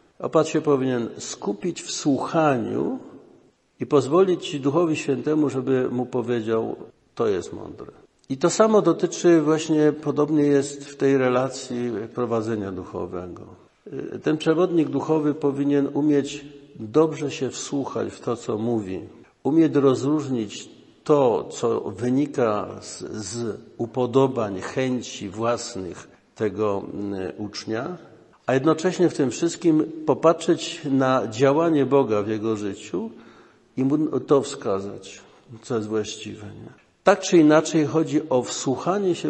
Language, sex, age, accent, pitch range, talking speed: Polish, male, 50-69, native, 115-150 Hz, 120 wpm